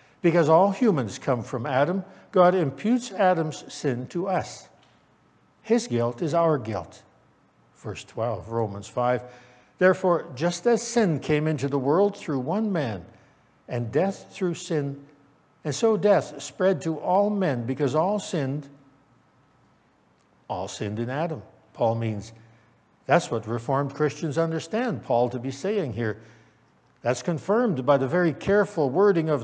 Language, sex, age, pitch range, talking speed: English, male, 60-79, 120-170 Hz, 145 wpm